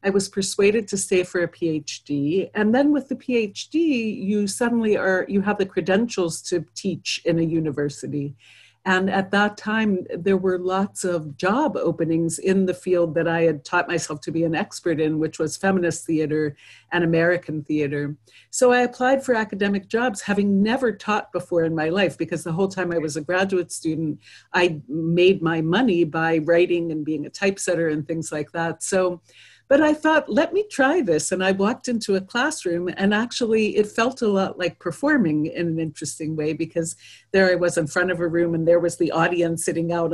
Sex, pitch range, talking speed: female, 165-210 Hz, 200 wpm